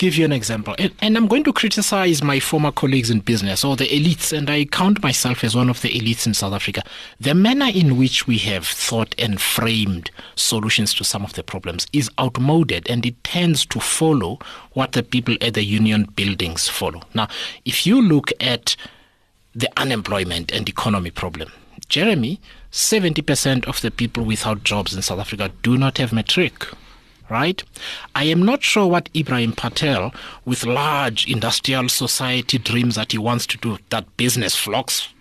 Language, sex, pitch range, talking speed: English, male, 115-165 Hz, 180 wpm